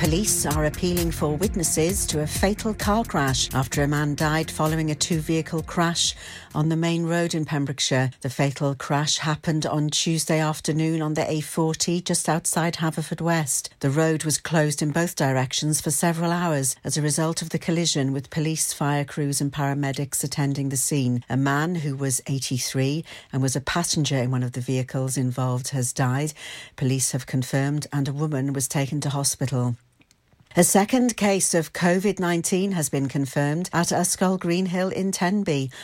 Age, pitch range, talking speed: 60-79, 135-165 Hz, 170 wpm